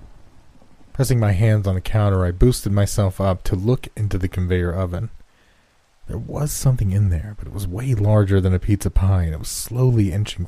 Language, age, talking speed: English, 30-49, 200 wpm